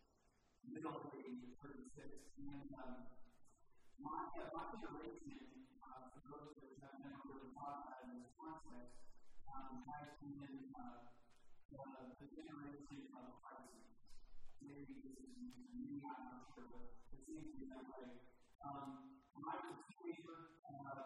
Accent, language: American, English